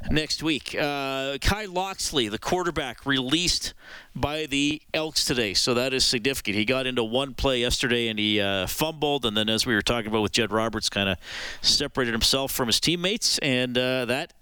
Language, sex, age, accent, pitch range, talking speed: English, male, 40-59, American, 110-155 Hz, 190 wpm